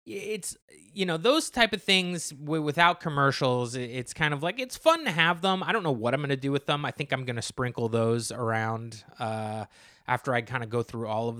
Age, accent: 20-39, American